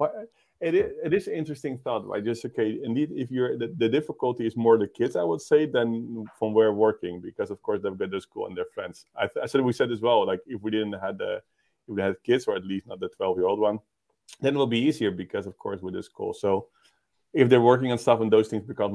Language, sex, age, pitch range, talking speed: English, male, 20-39, 100-125 Hz, 265 wpm